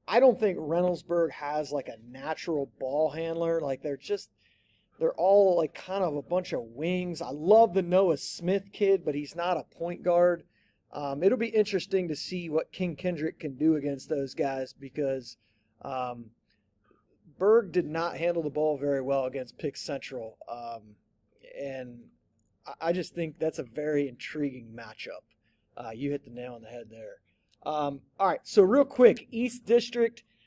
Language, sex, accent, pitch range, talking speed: English, male, American, 145-190 Hz, 175 wpm